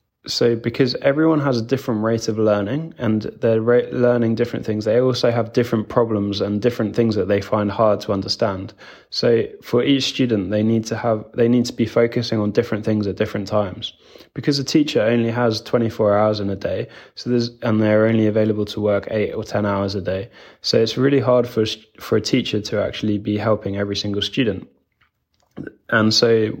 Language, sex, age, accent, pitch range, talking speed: English, male, 20-39, British, 105-120 Hz, 200 wpm